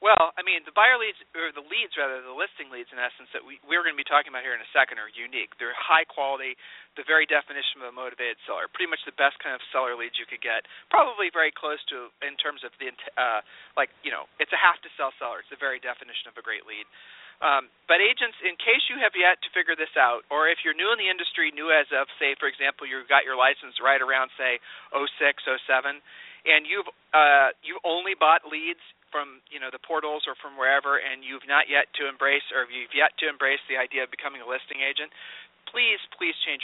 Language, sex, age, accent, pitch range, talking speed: English, male, 40-59, American, 140-175 Hz, 235 wpm